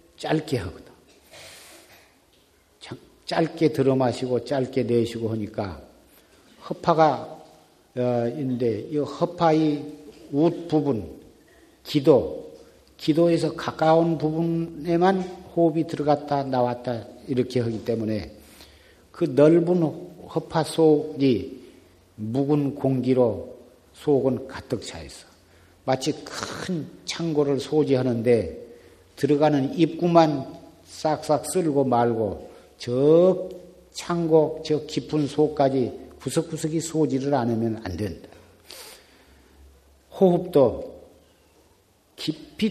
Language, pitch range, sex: Korean, 115-155 Hz, male